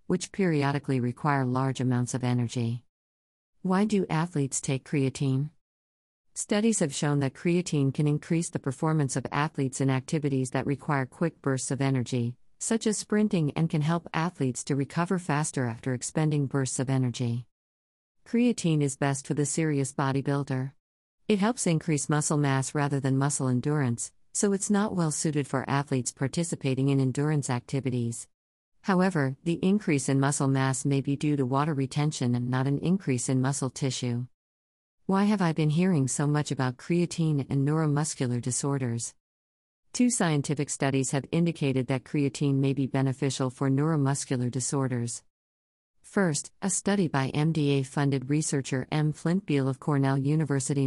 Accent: American